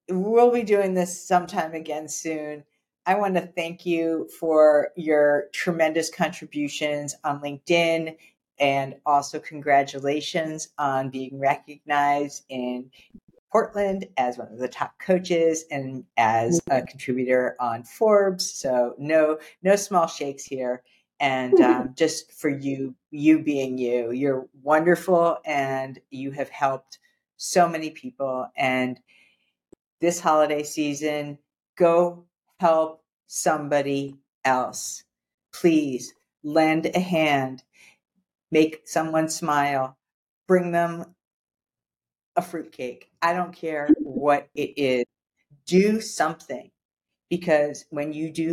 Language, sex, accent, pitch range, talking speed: English, female, American, 140-170 Hz, 115 wpm